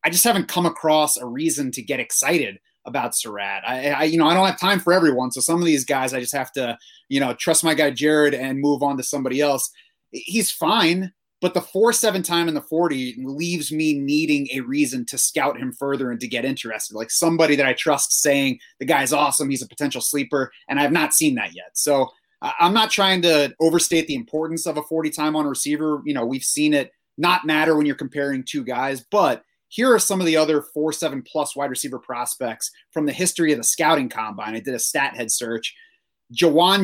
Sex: male